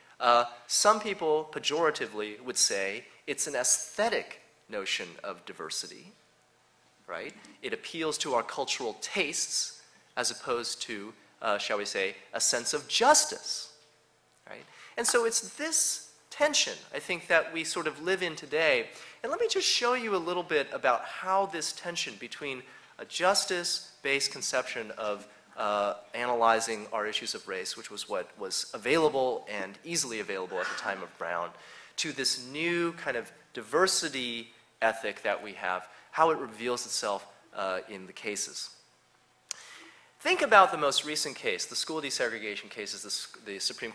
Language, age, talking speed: English, 30-49, 155 wpm